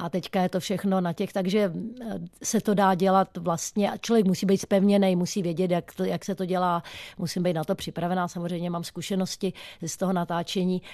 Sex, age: female, 30-49